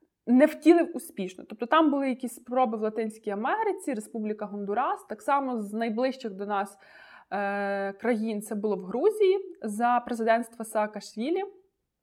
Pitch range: 215-275 Hz